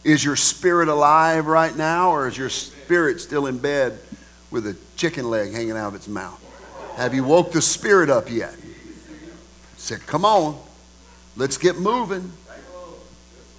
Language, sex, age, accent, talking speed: English, male, 50-69, American, 155 wpm